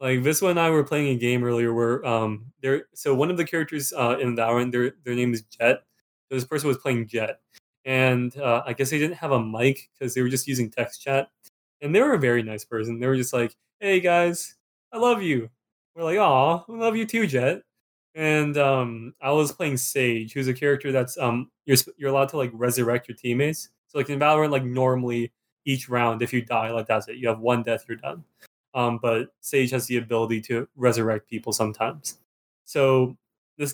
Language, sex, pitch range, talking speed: English, male, 125-160 Hz, 220 wpm